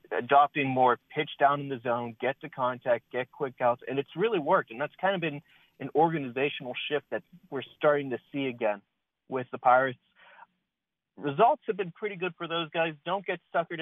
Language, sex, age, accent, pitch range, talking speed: English, male, 40-59, American, 120-150 Hz, 195 wpm